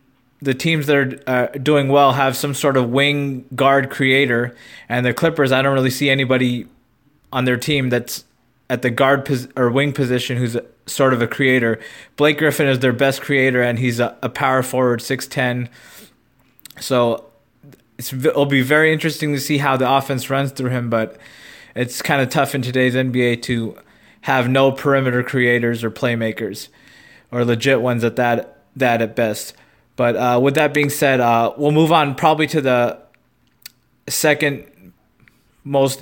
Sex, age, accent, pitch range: male, 20-39, American, 125-140 Hz